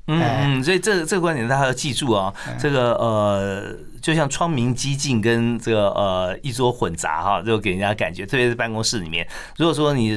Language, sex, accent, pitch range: Chinese, male, native, 105-130 Hz